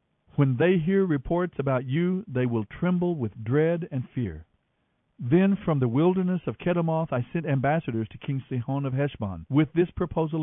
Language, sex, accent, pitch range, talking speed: English, male, American, 125-165 Hz, 175 wpm